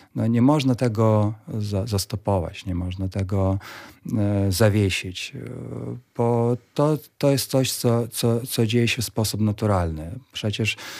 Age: 40-59